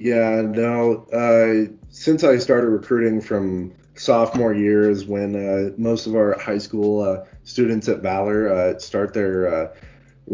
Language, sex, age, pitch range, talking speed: English, male, 20-39, 100-115 Hz, 145 wpm